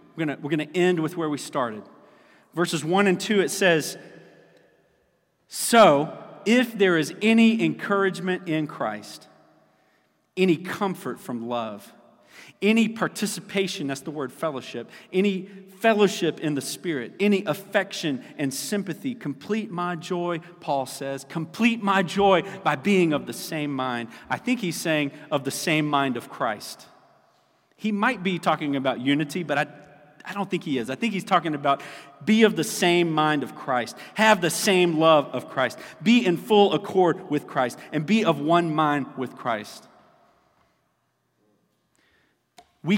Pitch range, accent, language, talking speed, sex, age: 140-195 Hz, American, English, 155 wpm, male, 40-59